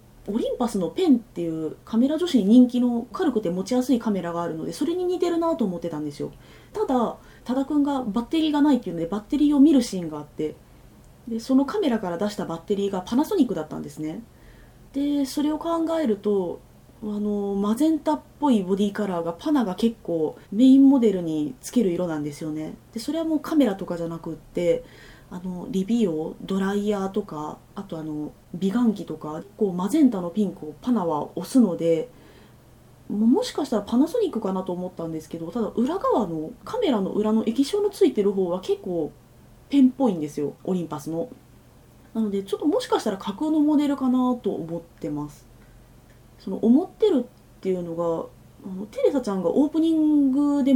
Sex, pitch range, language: female, 170-270 Hz, Japanese